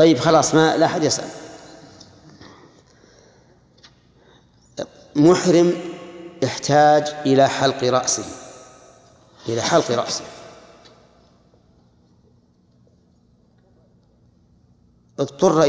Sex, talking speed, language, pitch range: male, 55 wpm, Arabic, 130-155 Hz